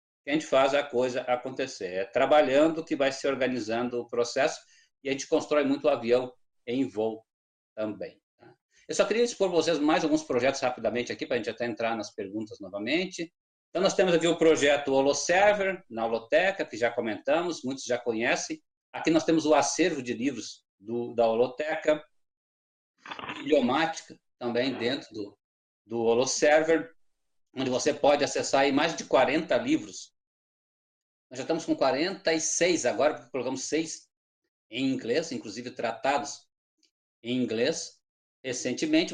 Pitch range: 120-165 Hz